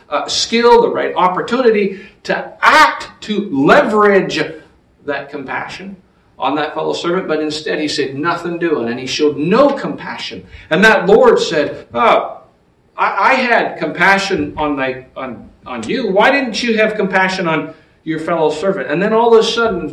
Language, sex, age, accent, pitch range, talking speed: English, male, 50-69, American, 155-225 Hz, 165 wpm